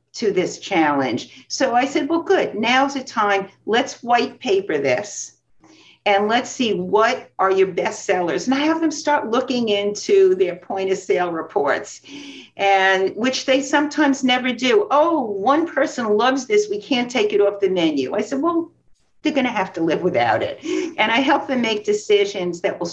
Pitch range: 190-275 Hz